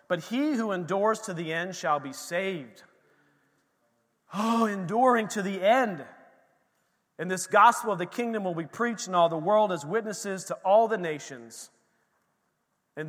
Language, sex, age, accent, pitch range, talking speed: English, male, 40-59, American, 160-225 Hz, 160 wpm